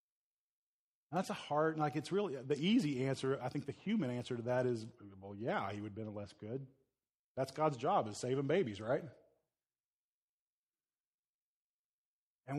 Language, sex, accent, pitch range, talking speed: English, male, American, 125-155 Hz, 155 wpm